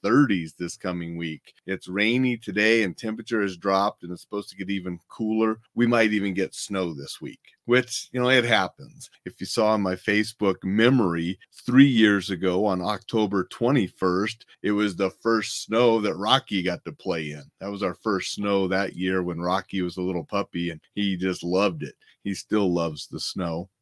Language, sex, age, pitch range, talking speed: English, male, 30-49, 95-125 Hz, 195 wpm